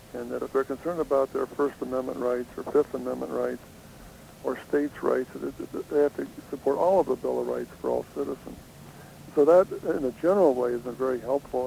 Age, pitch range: 60-79, 125-140 Hz